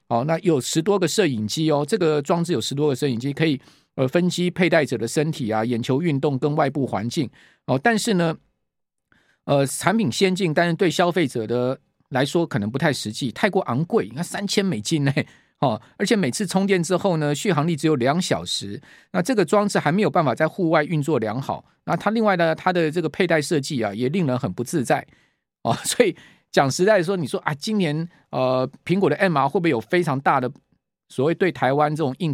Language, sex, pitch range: Chinese, male, 135-180 Hz